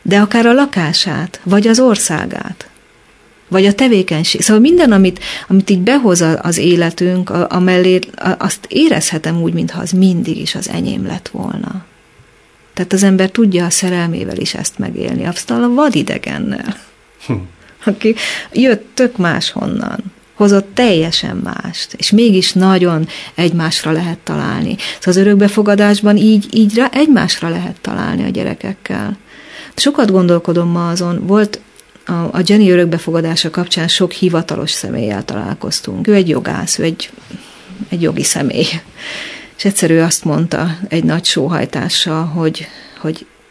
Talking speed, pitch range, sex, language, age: 130 wpm, 175-220 Hz, female, Hungarian, 30-49